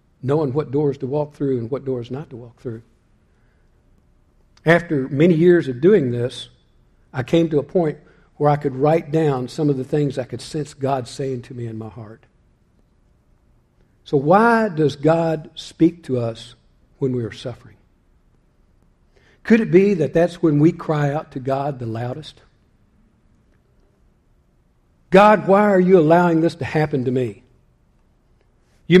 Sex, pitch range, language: male, 125-160 Hz, English